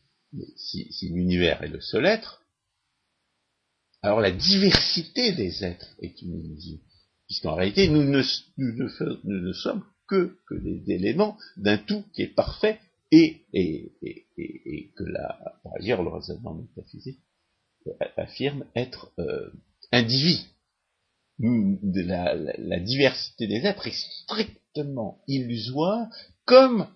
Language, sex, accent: French, male, French